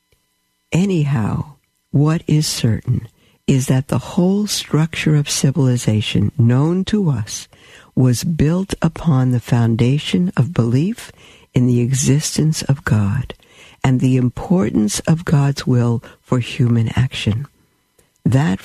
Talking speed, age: 115 wpm, 60-79